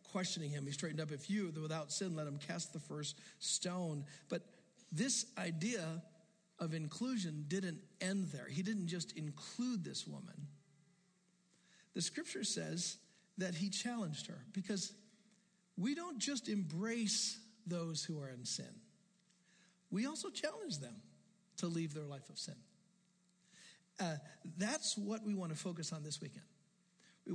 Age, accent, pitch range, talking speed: 50-69, American, 155-200 Hz, 145 wpm